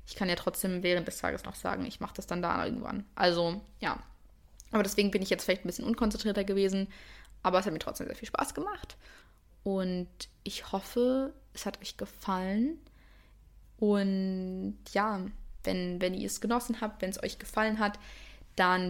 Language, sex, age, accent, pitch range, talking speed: English, female, 20-39, German, 180-220 Hz, 180 wpm